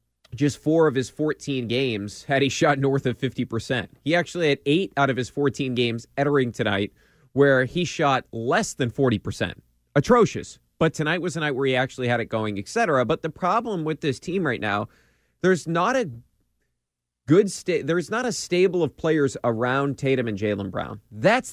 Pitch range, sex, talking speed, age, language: 125-180 Hz, male, 185 wpm, 30-49, English